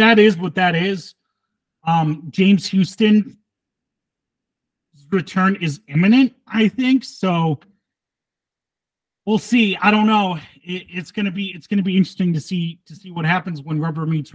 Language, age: English, 30-49